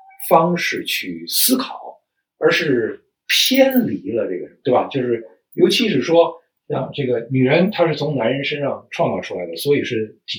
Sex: male